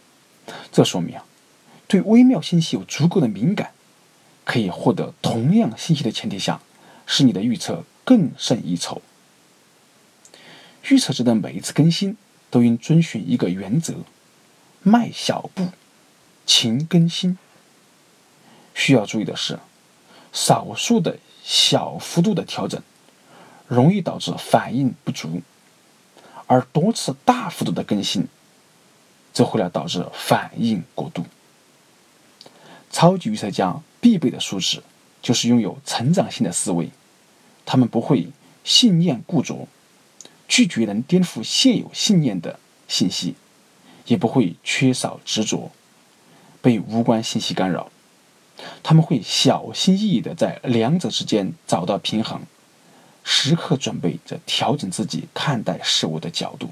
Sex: male